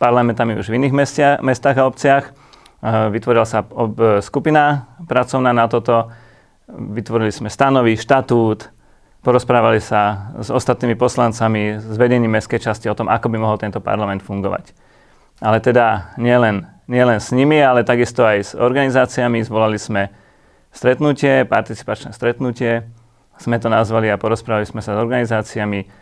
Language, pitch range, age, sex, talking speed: Slovak, 110-125 Hz, 30-49, male, 140 wpm